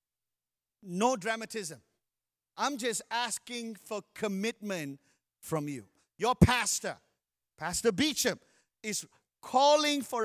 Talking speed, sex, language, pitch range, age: 95 wpm, male, English, 170-250 Hz, 50-69